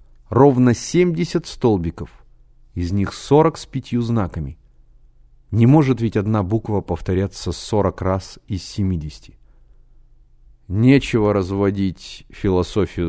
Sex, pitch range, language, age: male, 90-130 Hz, Russian, 30-49